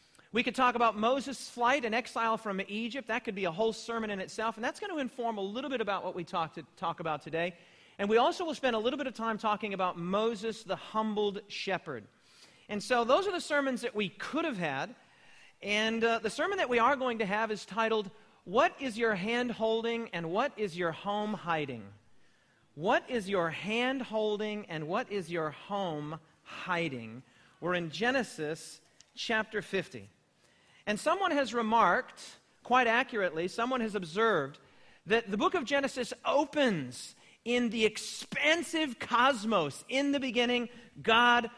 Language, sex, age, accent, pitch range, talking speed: English, male, 40-59, American, 200-245 Hz, 175 wpm